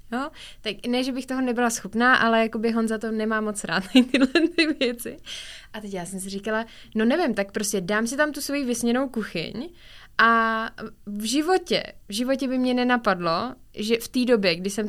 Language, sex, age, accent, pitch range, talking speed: Czech, female, 20-39, native, 205-230 Hz, 195 wpm